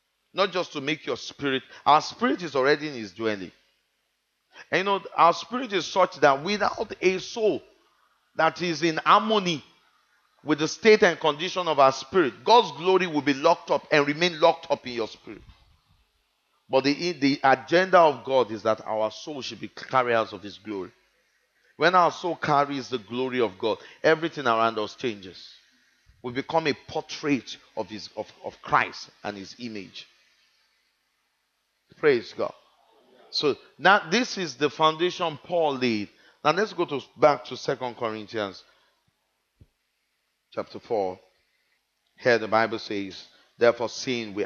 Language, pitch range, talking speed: English, 110-170 Hz, 155 wpm